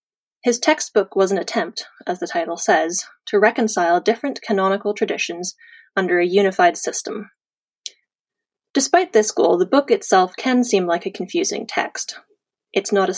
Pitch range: 195-275 Hz